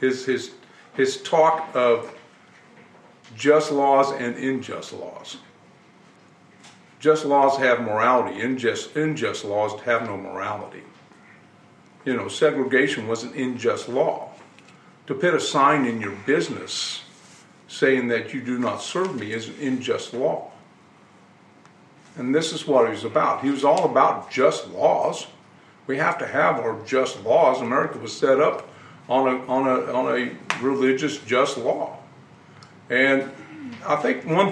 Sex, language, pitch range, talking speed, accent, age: male, English, 125-150 Hz, 145 wpm, American, 50-69